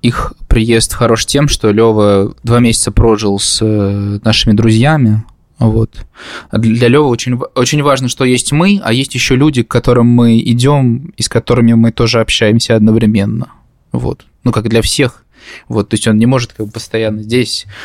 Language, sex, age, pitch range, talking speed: Russian, male, 20-39, 100-120 Hz, 175 wpm